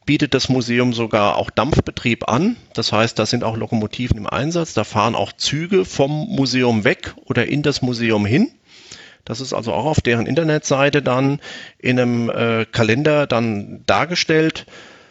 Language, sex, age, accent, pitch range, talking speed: German, male, 40-59, German, 115-155 Hz, 165 wpm